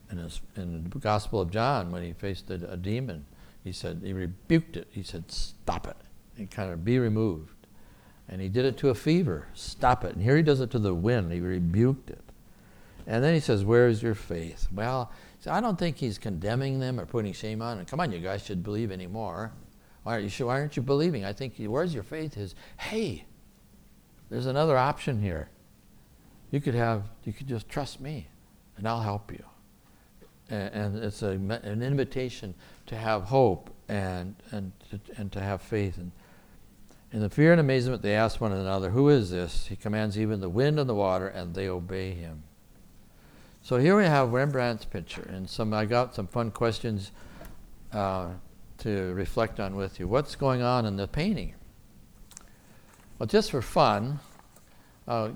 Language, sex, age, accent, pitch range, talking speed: English, male, 60-79, American, 95-125 Hz, 195 wpm